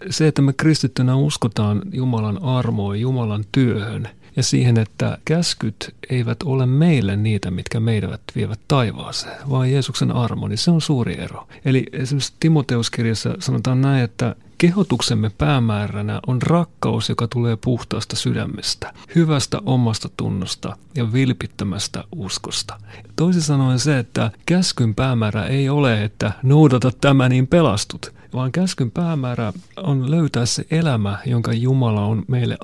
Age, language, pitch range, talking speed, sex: 40-59, Finnish, 110-140 Hz, 135 wpm, male